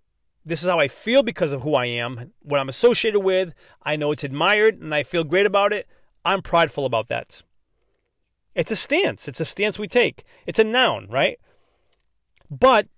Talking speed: 190 wpm